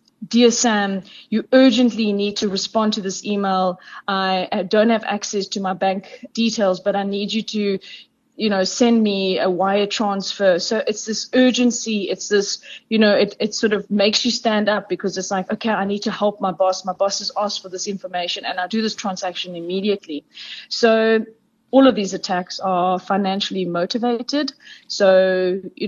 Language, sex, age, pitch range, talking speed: English, female, 20-39, 190-225 Hz, 185 wpm